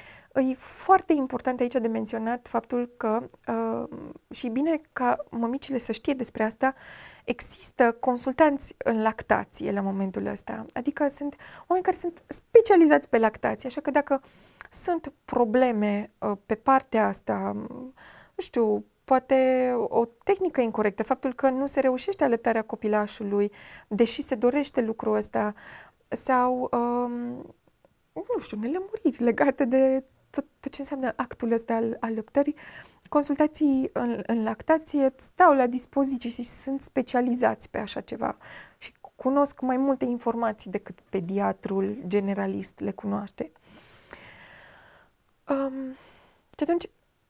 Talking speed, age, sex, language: 125 wpm, 20-39, female, Romanian